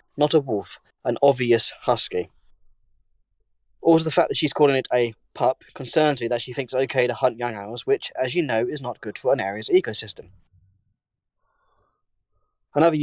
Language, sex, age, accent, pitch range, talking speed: English, male, 10-29, British, 115-140 Hz, 175 wpm